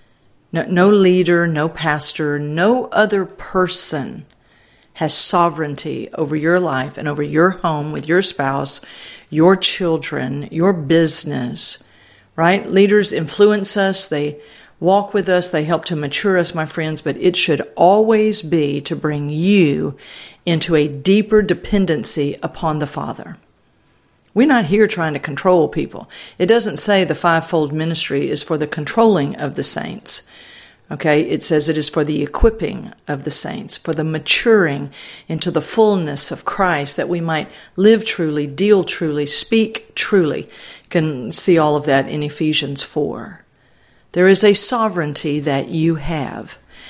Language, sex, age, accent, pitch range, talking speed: English, female, 50-69, American, 150-190 Hz, 150 wpm